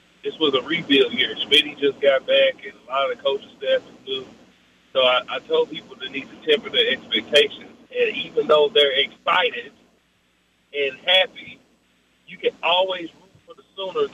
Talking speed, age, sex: 180 wpm, 40-59, male